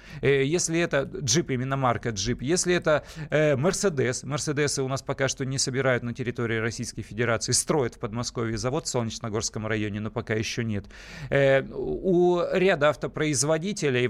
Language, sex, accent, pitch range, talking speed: Russian, male, native, 120-150 Hz, 145 wpm